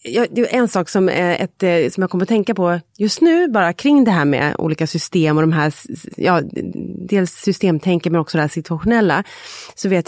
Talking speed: 205 wpm